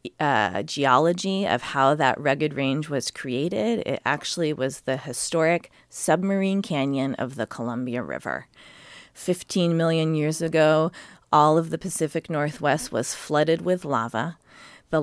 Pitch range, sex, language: 130-160 Hz, female, English